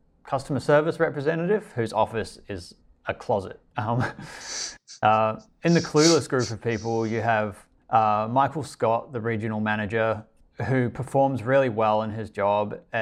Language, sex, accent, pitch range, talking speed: English, male, Australian, 95-115 Hz, 145 wpm